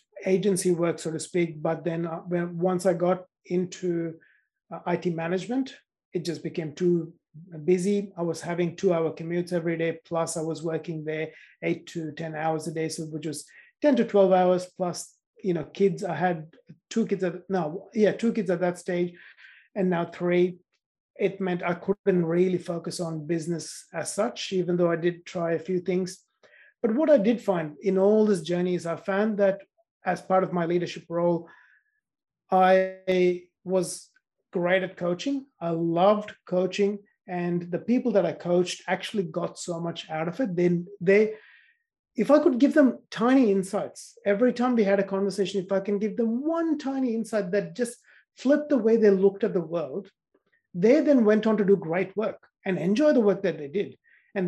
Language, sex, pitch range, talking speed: English, male, 170-205 Hz, 185 wpm